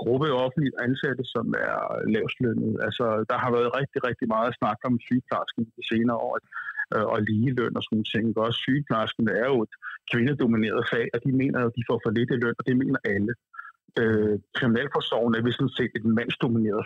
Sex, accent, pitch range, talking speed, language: male, native, 115-145 Hz, 190 wpm, Danish